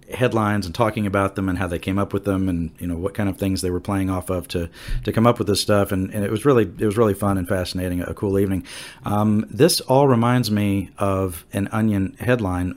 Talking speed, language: 255 wpm, English